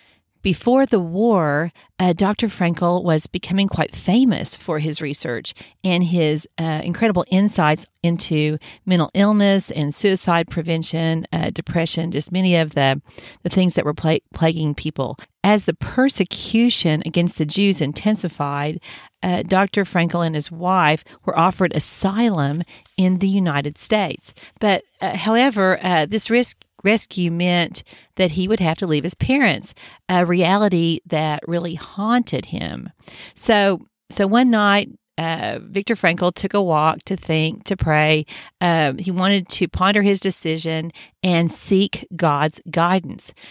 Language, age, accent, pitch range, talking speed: English, 40-59, American, 155-195 Hz, 145 wpm